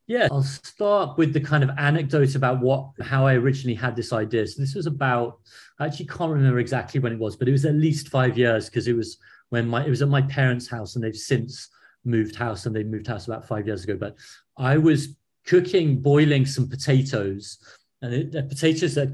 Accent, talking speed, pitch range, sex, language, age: British, 220 wpm, 115-140 Hz, male, English, 40-59